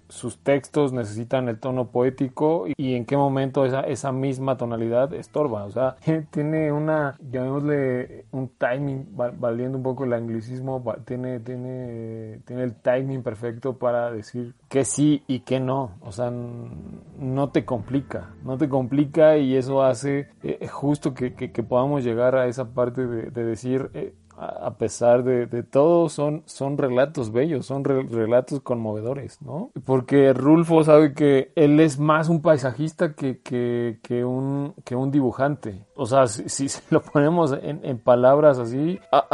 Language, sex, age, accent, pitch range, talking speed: Spanish, male, 30-49, Mexican, 120-140 Hz, 165 wpm